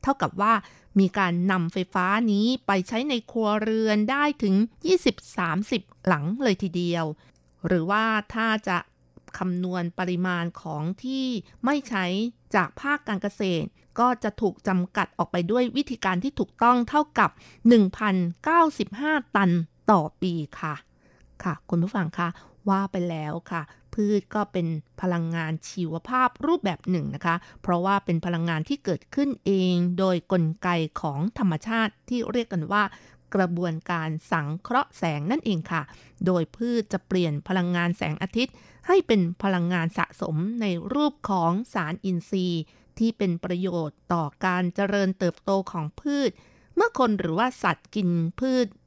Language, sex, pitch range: Thai, female, 175-220 Hz